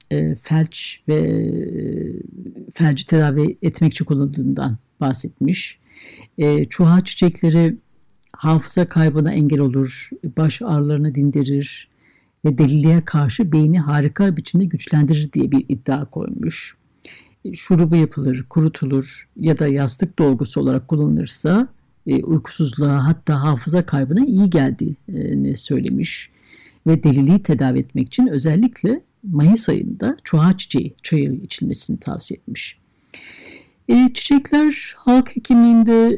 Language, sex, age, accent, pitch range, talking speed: Turkish, female, 60-79, native, 140-195 Hz, 100 wpm